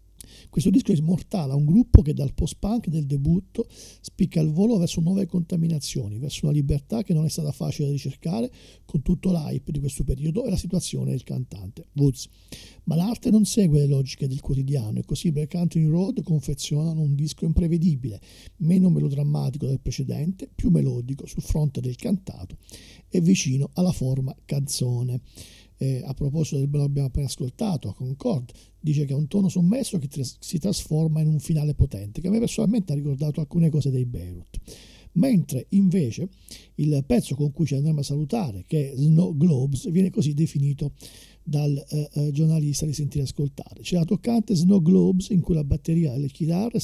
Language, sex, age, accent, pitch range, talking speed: Italian, male, 50-69, native, 135-175 Hz, 185 wpm